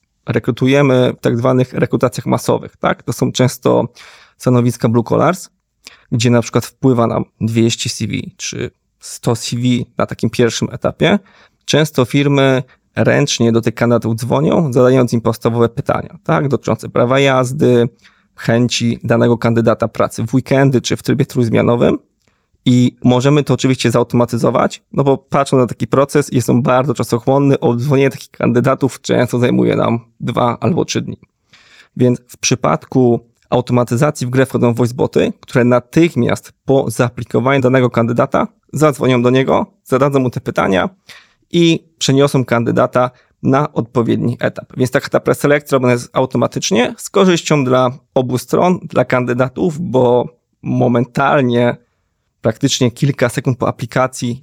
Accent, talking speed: native, 140 wpm